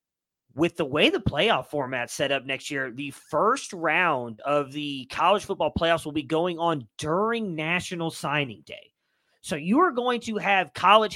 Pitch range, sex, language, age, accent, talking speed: 155-205 Hz, male, English, 30-49, American, 175 wpm